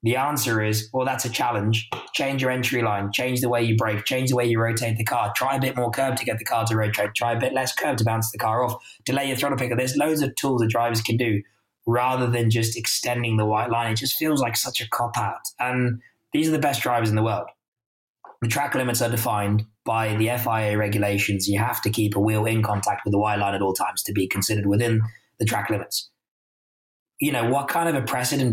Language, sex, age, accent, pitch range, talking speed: English, male, 20-39, British, 110-125 Hz, 250 wpm